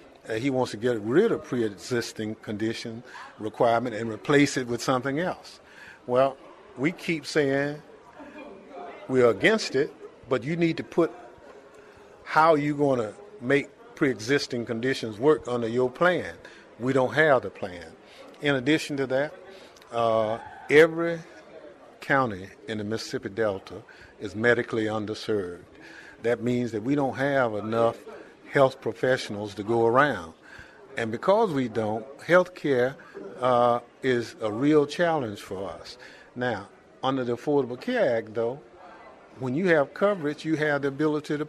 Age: 50-69